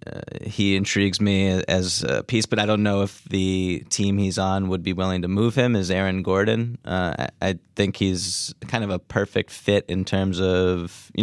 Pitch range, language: 95-105 Hz, English